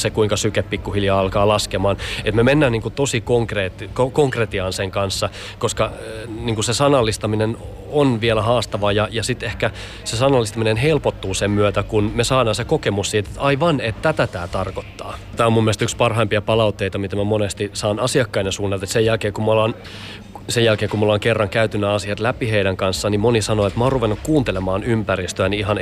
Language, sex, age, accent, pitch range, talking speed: Finnish, male, 30-49, native, 100-115 Hz, 180 wpm